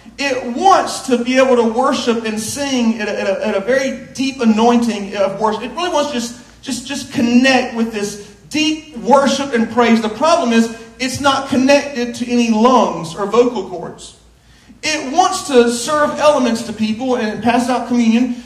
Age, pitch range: 40-59, 230-285 Hz